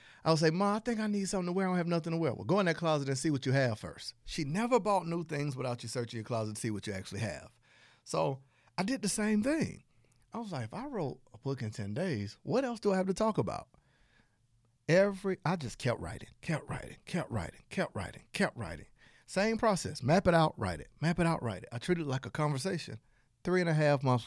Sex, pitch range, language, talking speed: male, 115-170 Hz, English, 260 wpm